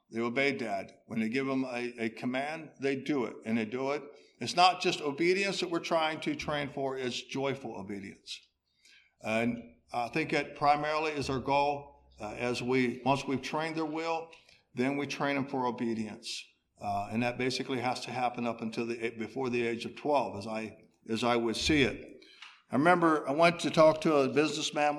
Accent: American